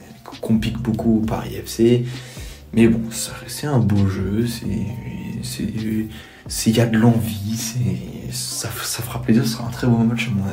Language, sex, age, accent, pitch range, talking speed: French, male, 20-39, French, 110-125 Hz, 195 wpm